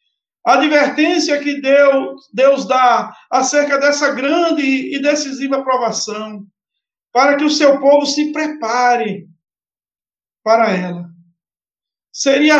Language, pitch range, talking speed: Portuguese, 220-285 Hz, 100 wpm